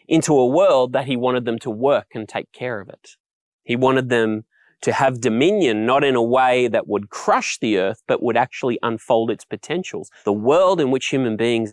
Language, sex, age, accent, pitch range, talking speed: English, male, 30-49, Australian, 115-150 Hz, 210 wpm